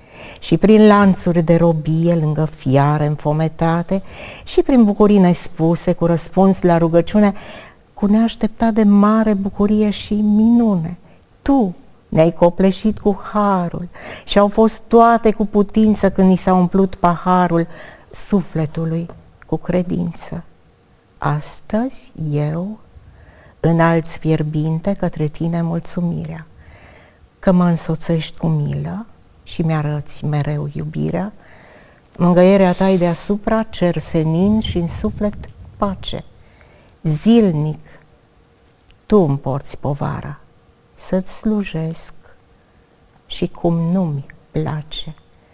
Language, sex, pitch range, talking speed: Romanian, female, 160-195 Hz, 105 wpm